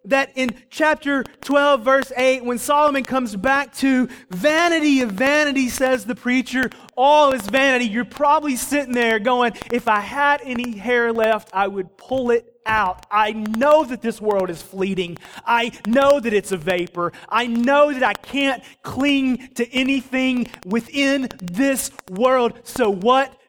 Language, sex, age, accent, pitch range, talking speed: English, male, 30-49, American, 200-265 Hz, 160 wpm